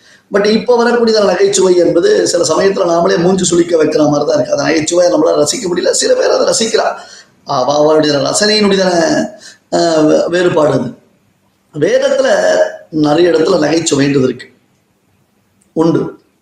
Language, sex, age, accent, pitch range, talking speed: Tamil, male, 30-49, native, 140-180 Hz, 115 wpm